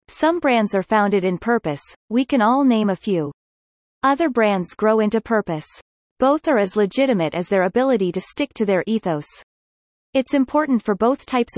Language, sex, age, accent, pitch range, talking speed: English, female, 30-49, American, 180-245 Hz, 175 wpm